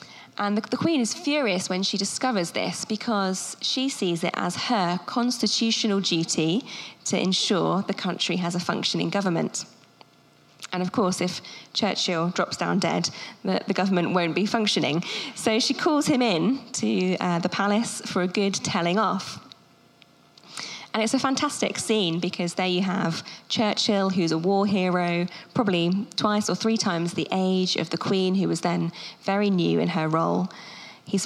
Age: 20-39